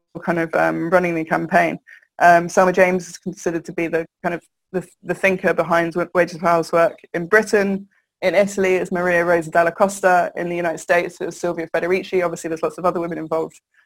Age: 20-39